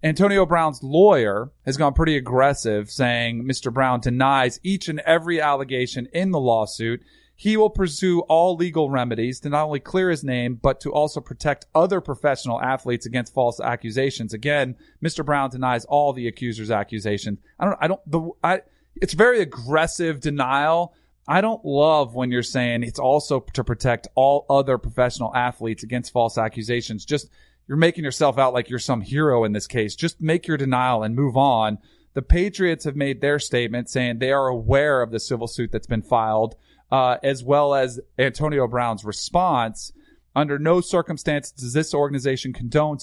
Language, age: English, 30-49